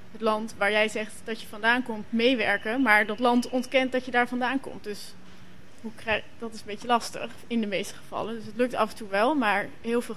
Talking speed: 255 wpm